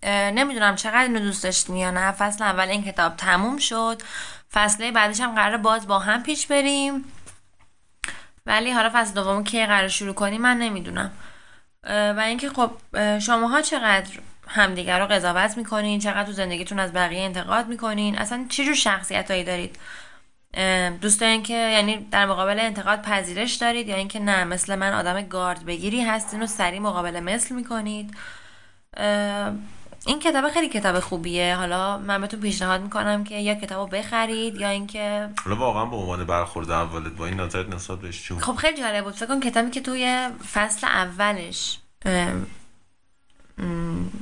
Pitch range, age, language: 185-225 Hz, 10-29, Persian